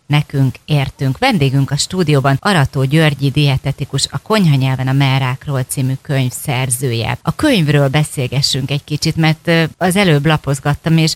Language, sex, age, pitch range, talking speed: Hungarian, female, 30-49, 140-160 Hz, 135 wpm